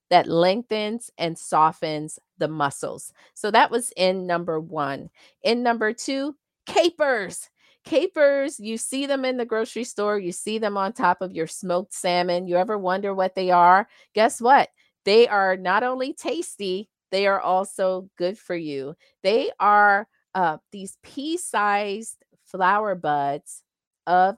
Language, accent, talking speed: English, American, 150 wpm